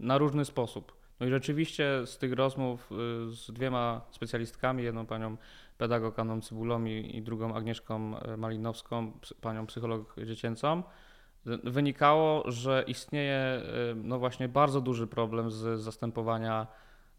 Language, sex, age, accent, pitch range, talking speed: Polish, male, 20-39, native, 110-125 Hz, 115 wpm